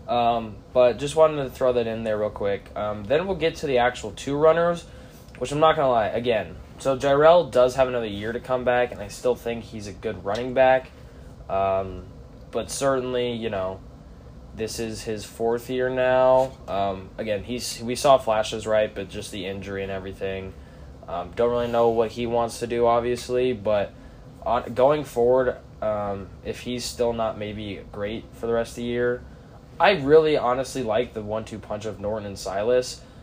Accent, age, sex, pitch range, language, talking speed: American, 10-29, male, 105-130 Hz, English, 195 wpm